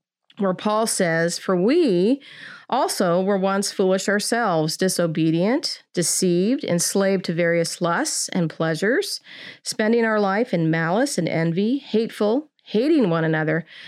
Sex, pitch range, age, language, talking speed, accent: female, 170-220 Hz, 40-59, English, 125 wpm, American